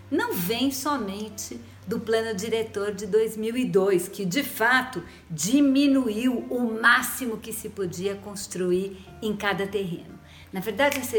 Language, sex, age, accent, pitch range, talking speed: Portuguese, female, 50-69, Brazilian, 195-265 Hz, 130 wpm